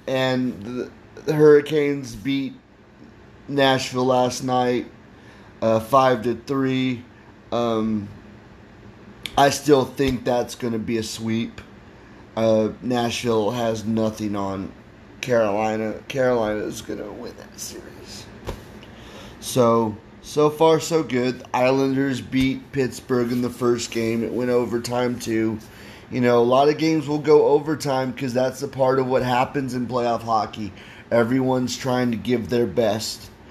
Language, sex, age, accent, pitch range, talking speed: English, male, 30-49, American, 110-130 Hz, 140 wpm